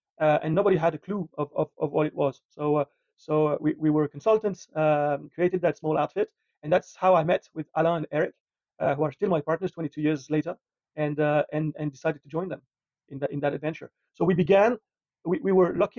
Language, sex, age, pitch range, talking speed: English, male, 40-59, 150-175 Hz, 235 wpm